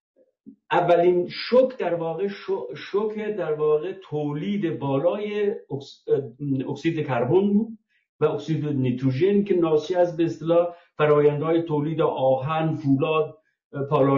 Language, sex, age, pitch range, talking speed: Persian, male, 50-69, 140-195 Hz, 100 wpm